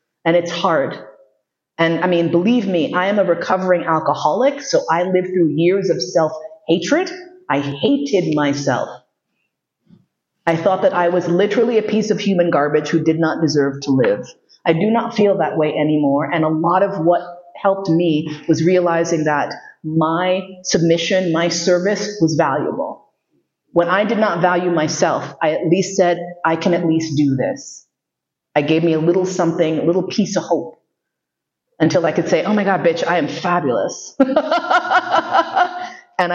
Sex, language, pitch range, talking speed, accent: female, English, 160-195 Hz, 170 wpm, American